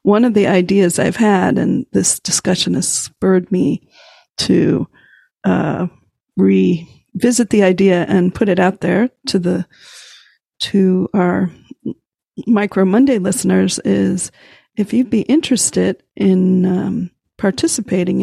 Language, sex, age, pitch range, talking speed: English, female, 50-69, 190-225 Hz, 120 wpm